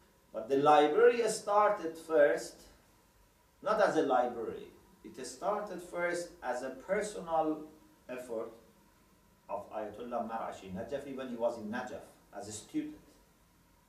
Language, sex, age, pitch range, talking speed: English, male, 50-69, 125-190 Hz, 115 wpm